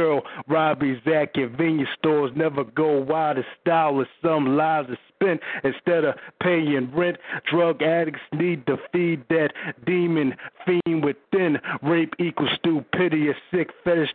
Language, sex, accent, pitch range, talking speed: English, male, American, 140-160 Hz, 140 wpm